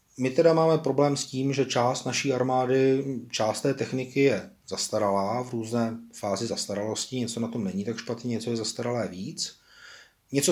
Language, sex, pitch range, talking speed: Czech, male, 115-130 Hz, 170 wpm